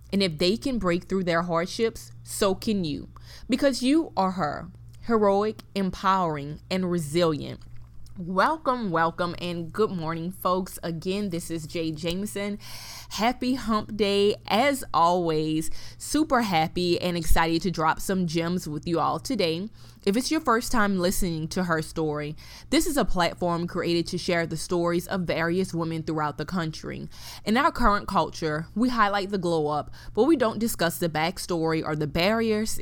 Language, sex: English, female